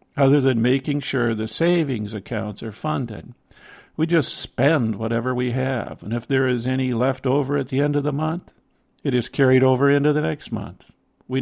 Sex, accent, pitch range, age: male, American, 115-145 Hz, 50-69